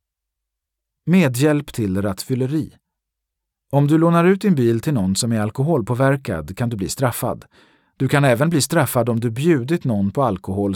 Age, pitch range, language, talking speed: 40-59, 110-150 Hz, Swedish, 165 wpm